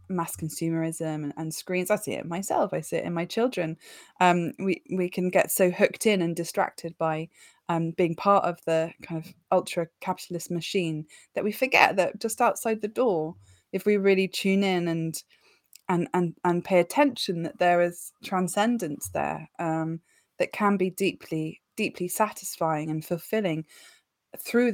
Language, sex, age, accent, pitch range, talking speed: English, female, 20-39, British, 165-205 Hz, 165 wpm